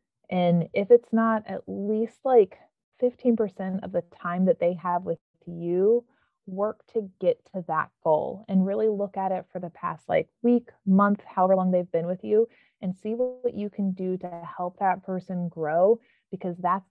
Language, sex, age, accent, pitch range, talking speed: English, female, 30-49, American, 170-200 Hz, 185 wpm